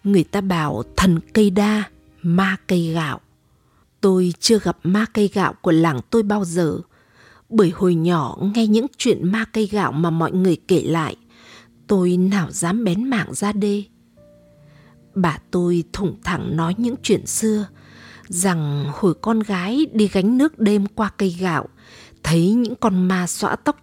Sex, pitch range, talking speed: female, 165-215 Hz, 165 wpm